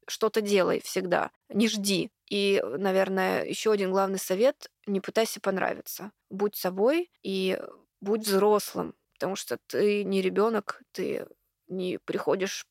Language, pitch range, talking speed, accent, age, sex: Russian, 190-230 Hz, 130 wpm, native, 20-39, female